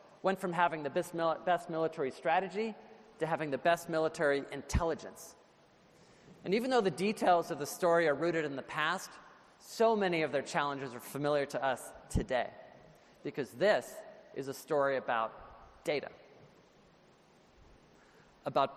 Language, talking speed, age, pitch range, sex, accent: English, 140 wpm, 40-59, 145-185 Hz, male, American